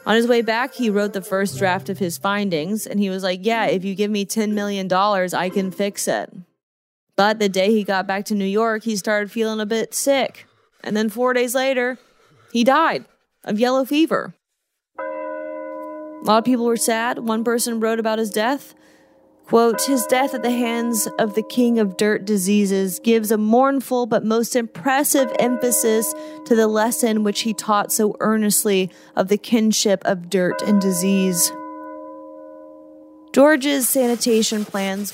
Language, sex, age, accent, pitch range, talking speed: English, female, 20-39, American, 195-235 Hz, 170 wpm